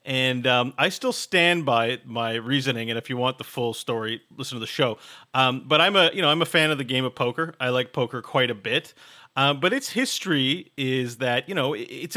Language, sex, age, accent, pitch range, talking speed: English, male, 30-49, American, 120-155 Hz, 240 wpm